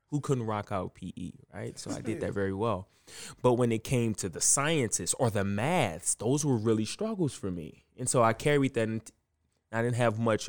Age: 20-39